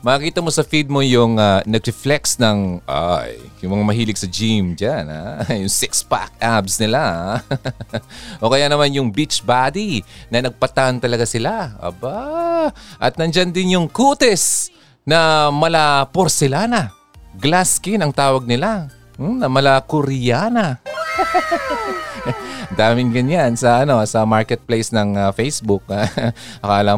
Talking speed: 135 wpm